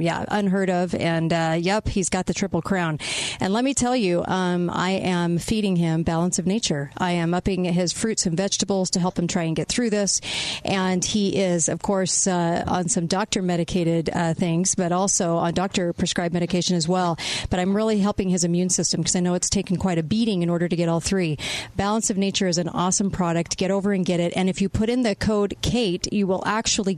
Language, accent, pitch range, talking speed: English, American, 175-205 Hz, 225 wpm